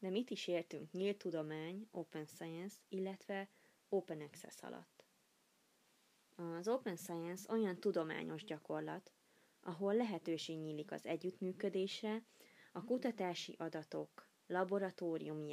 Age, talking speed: 20-39, 105 wpm